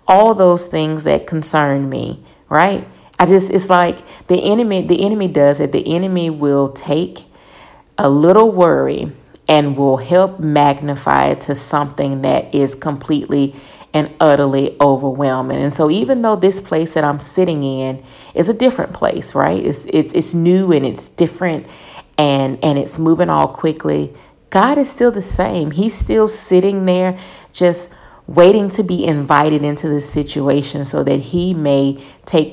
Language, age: English, 30-49